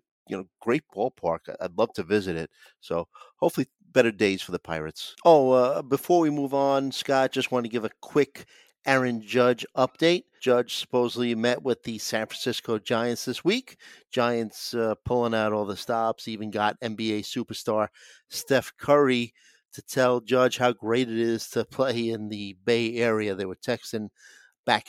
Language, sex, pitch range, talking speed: English, male, 110-130 Hz, 175 wpm